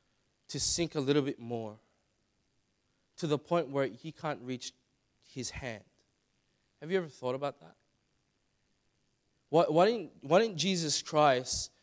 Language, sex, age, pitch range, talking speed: English, male, 20-39, 115-145 Hz, 140 wpm